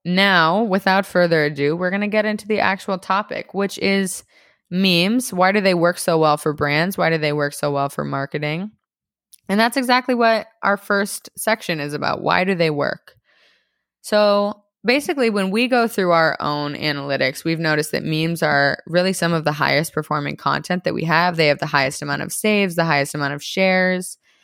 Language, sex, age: English, female, 20-39